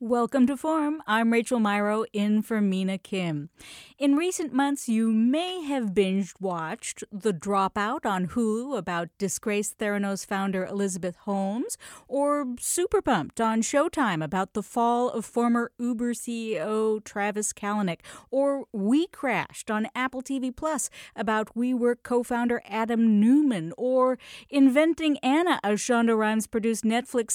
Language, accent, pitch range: English, American, 205-260 Hz